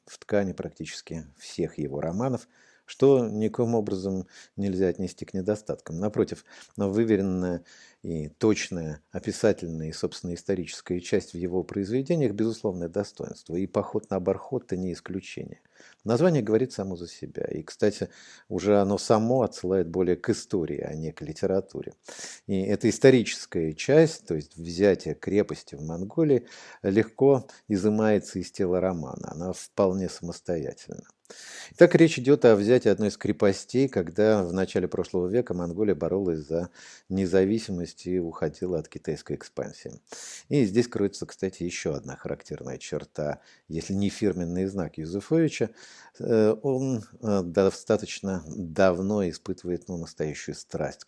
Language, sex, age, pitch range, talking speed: Russian, male, 50-69, 85-115 Hz, 135 wpm